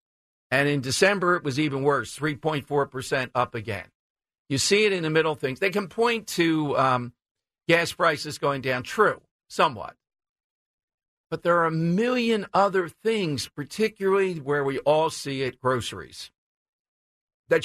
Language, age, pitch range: English, 50-69, 130-170 Hz